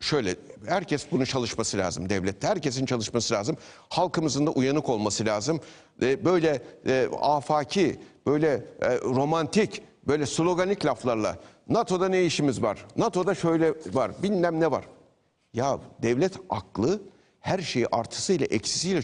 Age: 60-79